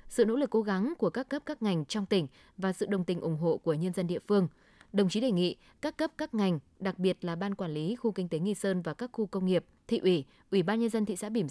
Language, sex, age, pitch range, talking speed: Vietnamese, female, 20-39, 175-215 Hz, 290 wpm